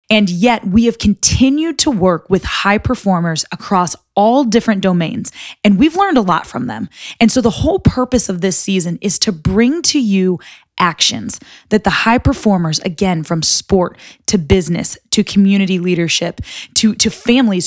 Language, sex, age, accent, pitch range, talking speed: English, female, 20-39, American, 180-235 Hz, 170 wpm